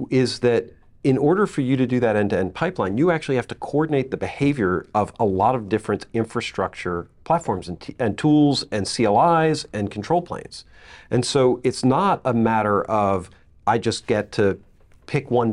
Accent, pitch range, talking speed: American, 110-145 Hz, 180 wpm